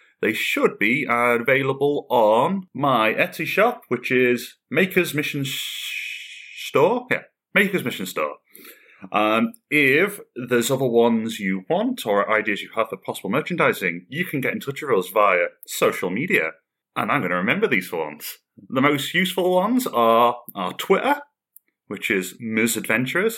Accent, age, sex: British, 30-49, male